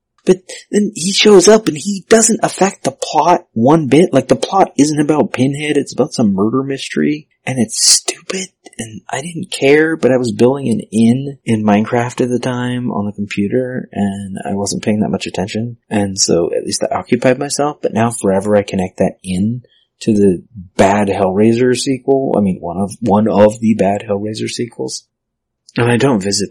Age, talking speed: 30-49, 190 wpm